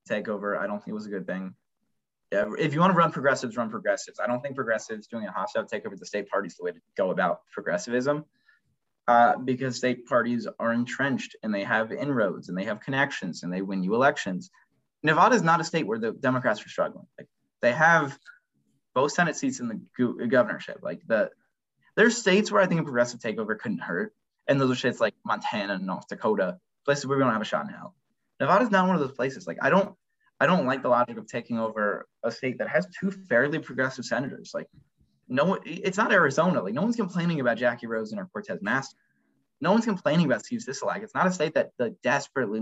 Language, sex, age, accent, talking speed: English, male, 20-39, American, 230 wpm